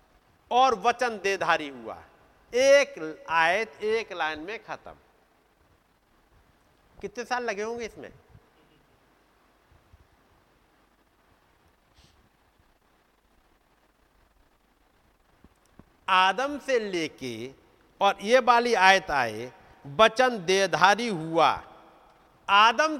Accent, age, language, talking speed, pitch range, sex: native, 50-69, Hindi, 70 wpm, 155-225 Hz, male